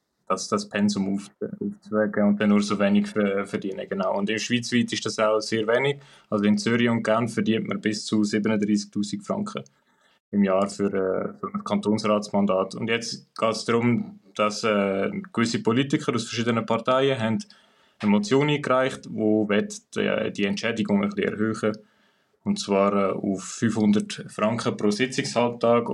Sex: male